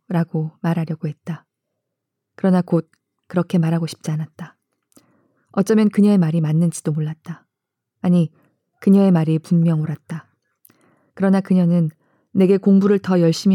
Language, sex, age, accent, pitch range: Korean, female, 20-39, native, 160-195 Hz